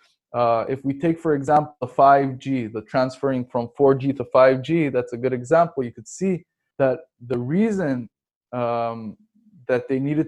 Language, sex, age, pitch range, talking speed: English, male, 20-39, 125-150 Hz, 165 wpm